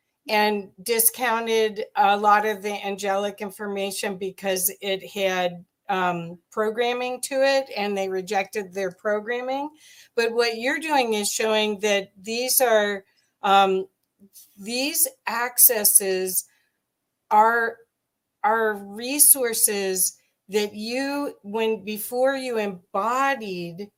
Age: 50-69